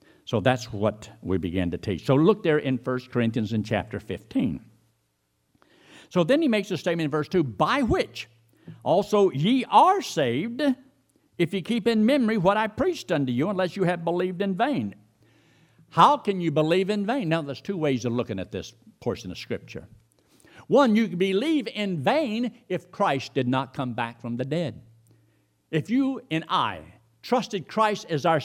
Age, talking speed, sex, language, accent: 60-79, 180 wpm, male, English, American